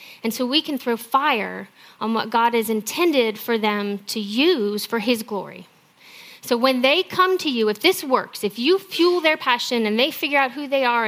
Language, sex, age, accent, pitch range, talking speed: English, female, 30-49, American, 210-285 Hz, 210 wpm